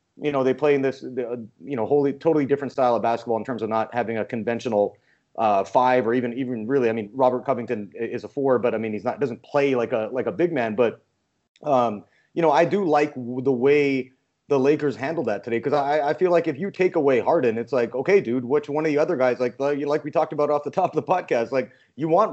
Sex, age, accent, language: male, 30-49, American, English